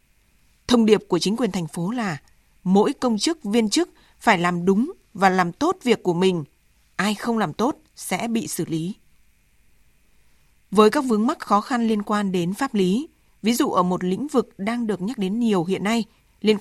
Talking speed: 200 wpm